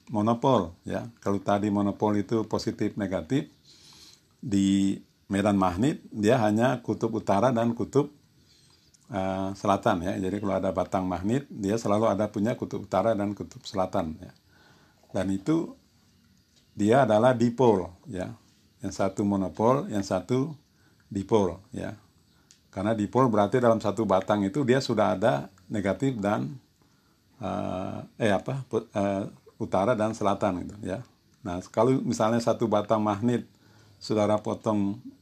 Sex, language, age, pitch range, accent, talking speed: male, Indonesian, 50-69, 95-115 Hz, native, 135 wpm